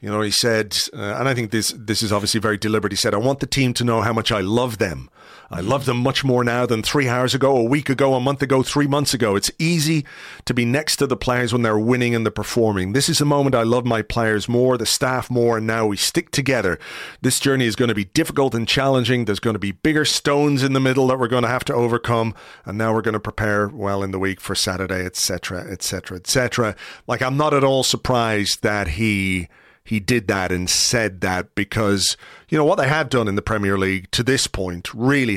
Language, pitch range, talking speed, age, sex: English, 105-130 Hz, 255 wpm, 40-59, male